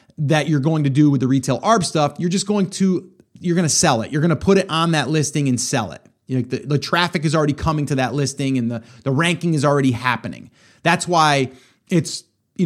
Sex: male